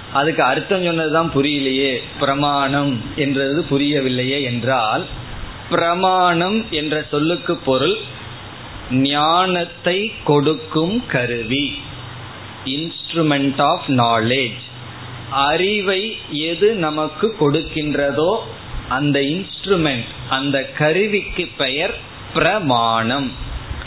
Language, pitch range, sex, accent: Tamil, 130-165 Hz, male, native